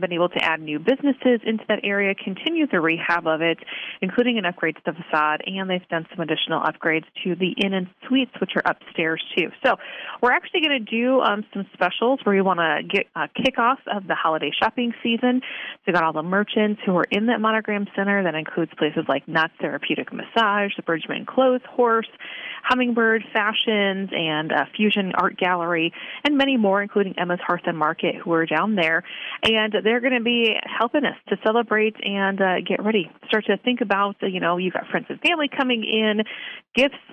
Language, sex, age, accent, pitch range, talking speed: English, female, 30-49, American, 175-240 Hz, 205 wpm